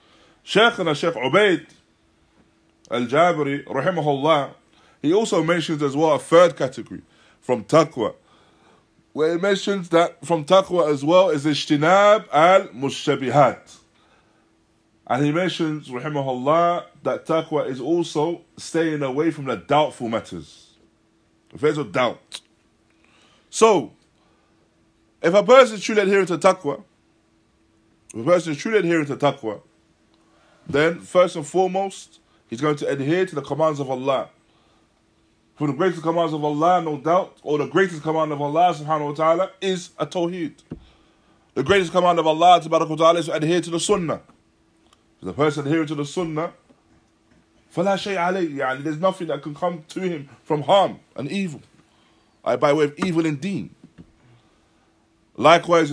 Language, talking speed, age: English, 135 wpm, 20-39